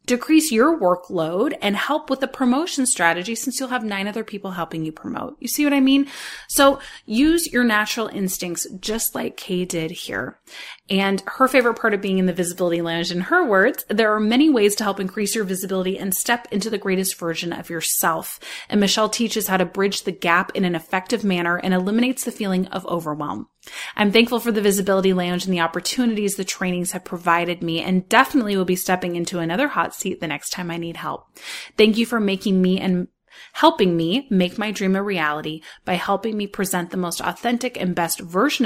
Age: 30-49